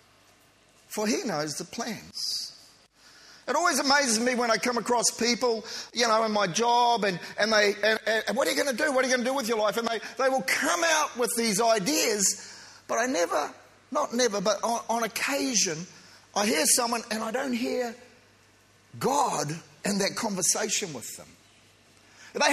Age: 40-59